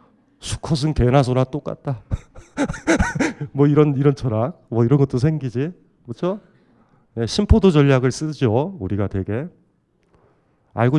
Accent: native